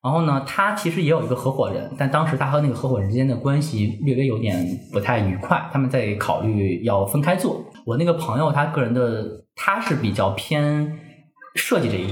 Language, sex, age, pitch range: Chinese, male, 20-39, 105-145 Hz